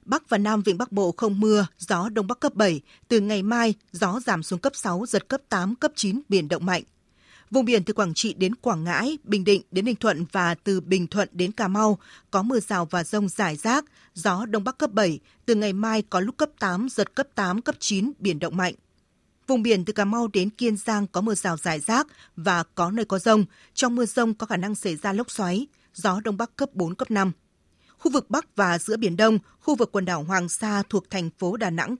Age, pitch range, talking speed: 20-39, 185-230 Hz, 240 wpm